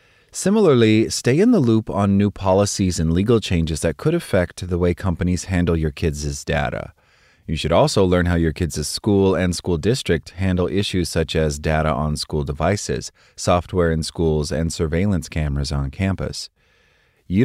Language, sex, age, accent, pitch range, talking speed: English, male, 30-49, American, 80-100 Hz, 170 wpm